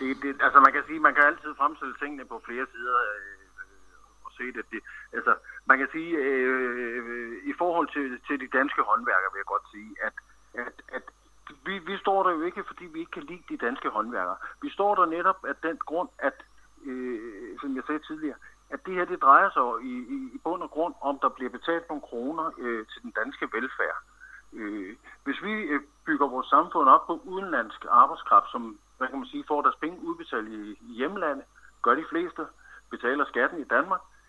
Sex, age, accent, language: male, 60-79, native, Danish